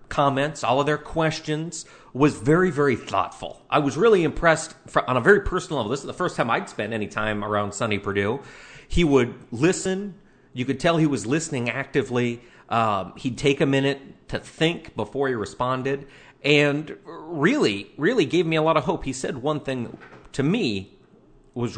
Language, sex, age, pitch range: English, male, 40-59, 120-160 Hz